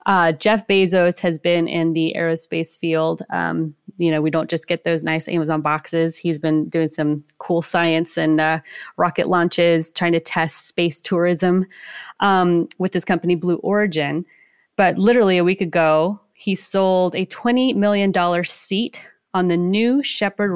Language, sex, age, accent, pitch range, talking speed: English, female, 20-39, American, 165-200 Hz, 165 wpm